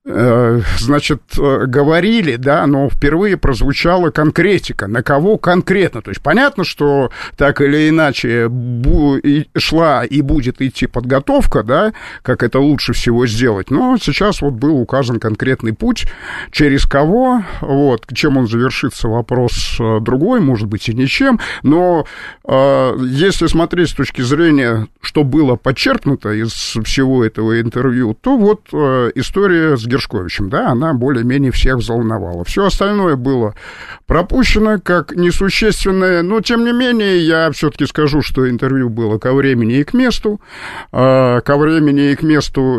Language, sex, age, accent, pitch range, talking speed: Russian, male, 50-69, native, 120-160 Hz, 135 wpm